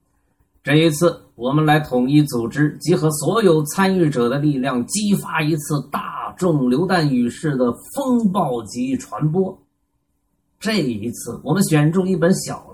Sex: male